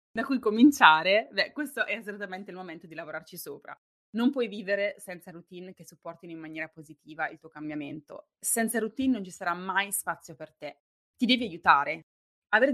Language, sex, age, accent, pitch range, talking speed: Italian, female, 20-39, native, 170-225 Hz, 180 wpm